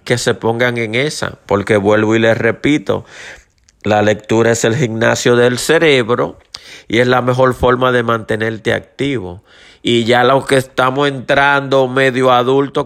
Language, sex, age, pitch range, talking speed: Spanish, male, 30-49, 110-135 Hz, 155 wpm